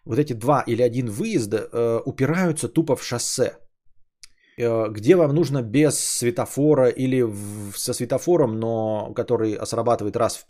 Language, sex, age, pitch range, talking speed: Bulgarian, male, 20-39, 115-155 Hz, 150 wpm